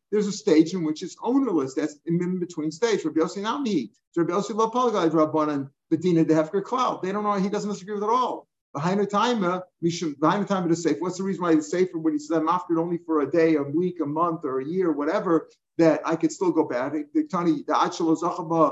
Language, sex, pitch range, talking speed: English, male, 155-185 Hz, 200 wpm